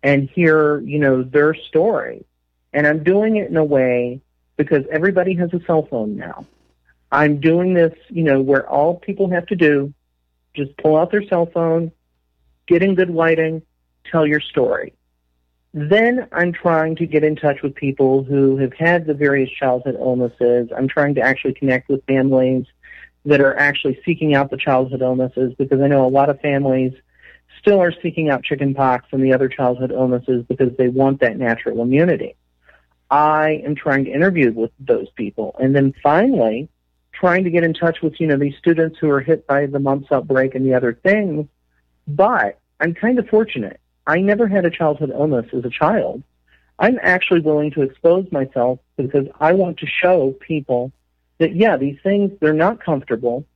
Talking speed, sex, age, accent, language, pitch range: 185 wpm, male, 40-59, American, English, 130-165 Hz